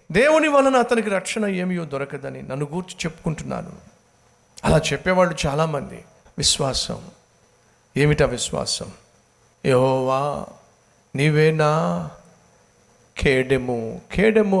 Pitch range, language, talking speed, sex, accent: 130-180 Hz, Telugu, 80 wpm, male, native